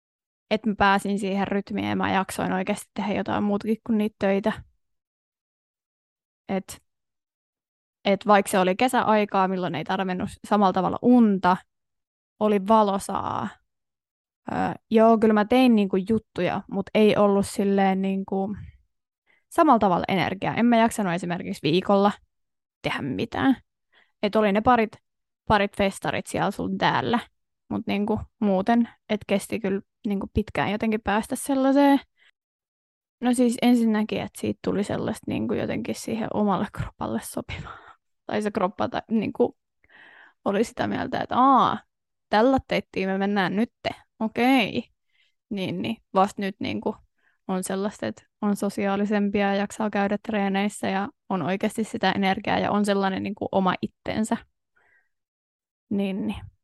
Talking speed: 130 wpm